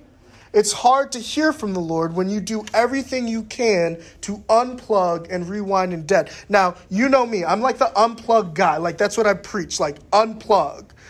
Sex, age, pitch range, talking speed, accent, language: male, 30-49, 180-235 Hz, 190 wpm, American, English